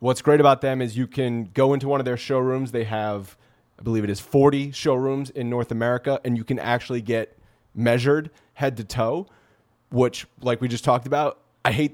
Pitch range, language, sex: 110-130 Hz, English, male